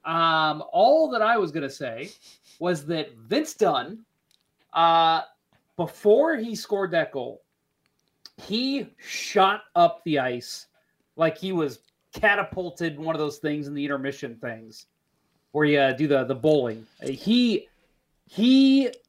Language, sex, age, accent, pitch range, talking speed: English, male, 30-49, American, 145-195 Hz, 140 wpm